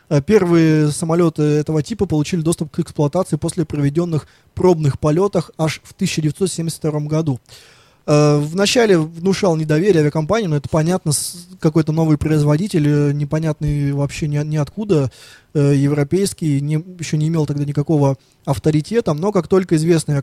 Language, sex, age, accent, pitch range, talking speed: Russian, male, 20-39, native, 145-170 Hz, 130 wpm